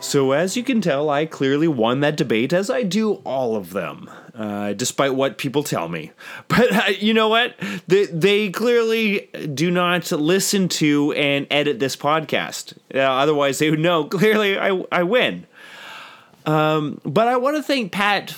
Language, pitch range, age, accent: English, 115-175 Hz, 30-49, American